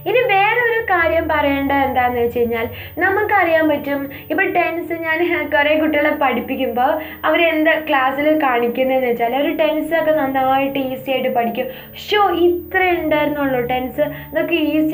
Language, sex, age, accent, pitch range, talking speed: Malayalam, female, 20-39, native, 250-325 Hz, 125 wpm